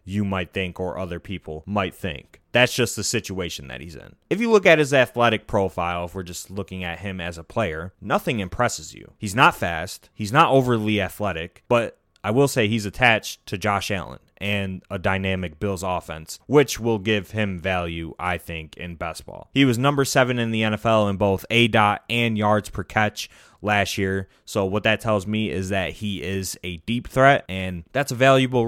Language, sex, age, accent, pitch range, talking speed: English, male, 20-39, American, 95-115 Hz, 205 wpm